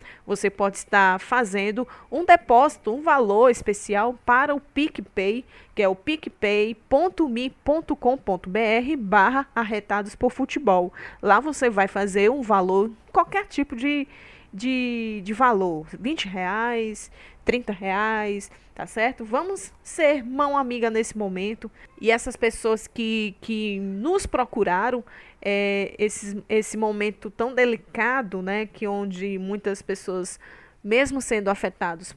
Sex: female